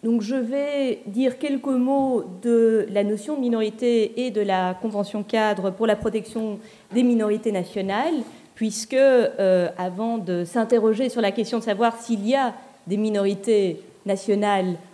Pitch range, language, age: 195-245 Hz, French, 40-59